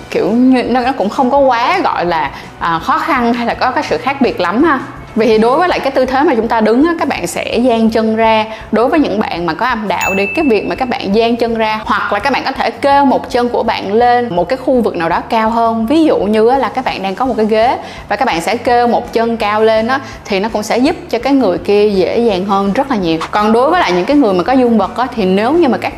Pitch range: 205-260 Hz